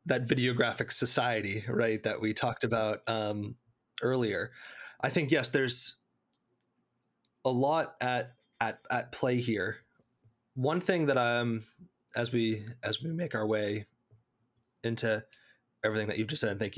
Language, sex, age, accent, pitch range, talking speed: English, male, 20-39, American, 110-125 Hz, 145 wpm